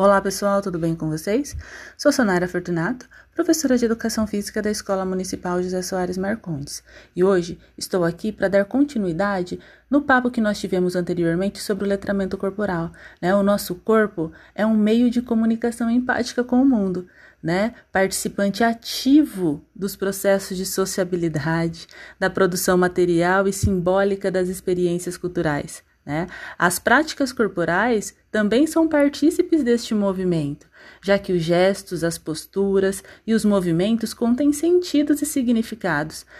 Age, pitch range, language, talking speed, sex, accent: 30-49, 185-250 Hz, Portuguese, 140 wpm, female, Brazilian